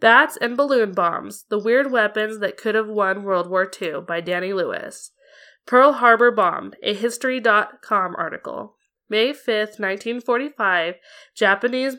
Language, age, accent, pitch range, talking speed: English, 20-39, American, 195-235 Hz, 135 wpm